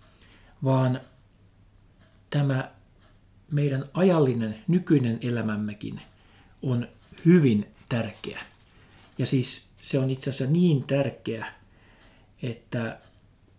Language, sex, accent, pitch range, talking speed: Finnish, male, native, 110-150 Hz, 80 wpm